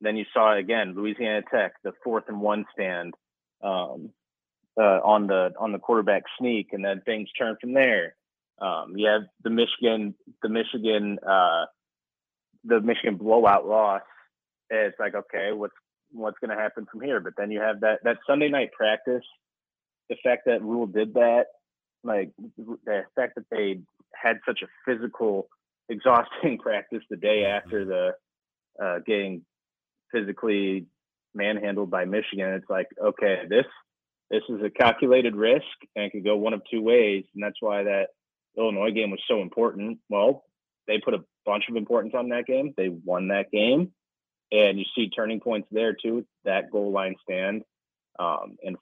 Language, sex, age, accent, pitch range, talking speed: English, male, 30-49, American, 95-110 Hz, 170 wpm